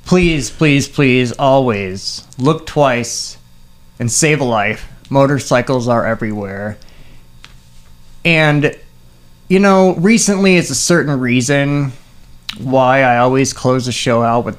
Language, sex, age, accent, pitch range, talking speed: English, male, 30-49, American, 115-180 Hz, 120 wpm